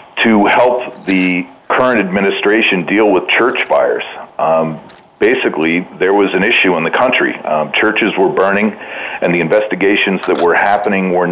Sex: male